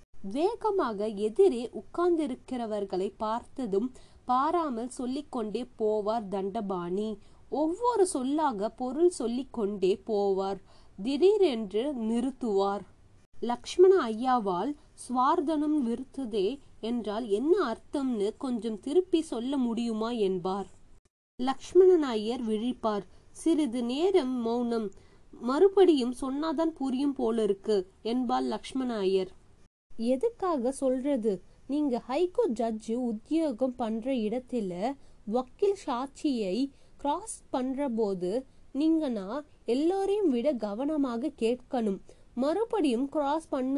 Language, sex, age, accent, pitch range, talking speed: Tamil, female, 20-39, native, 225-305 Hz, 70 wpm